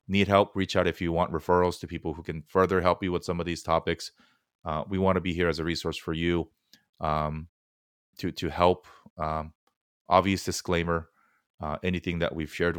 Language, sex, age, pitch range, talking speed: English, male, 30-49, 80-90 Hz, 200 wpm